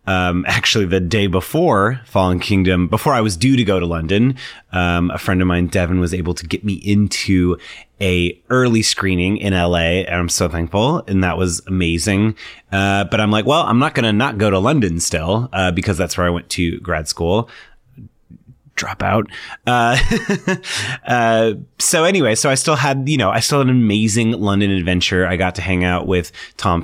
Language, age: English, 30-49